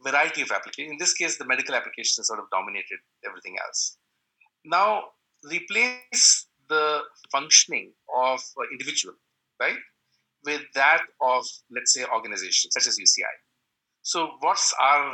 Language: English